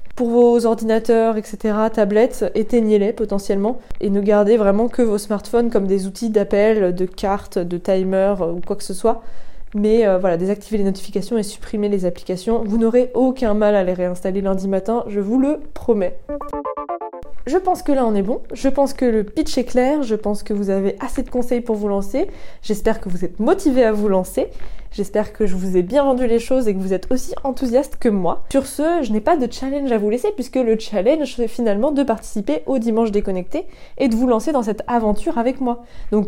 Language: French